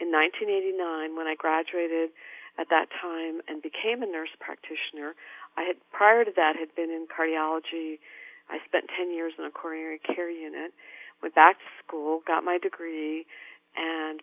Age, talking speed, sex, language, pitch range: 50-69, 165 wpm, female, English, 160-185 Hz